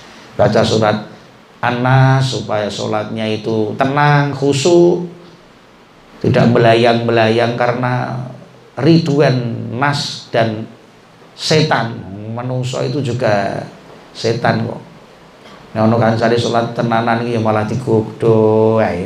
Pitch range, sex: 115-135 Hz, male